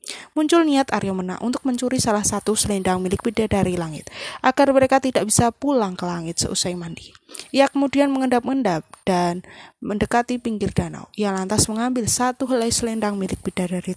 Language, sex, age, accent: Indonesian, female, 20-39, native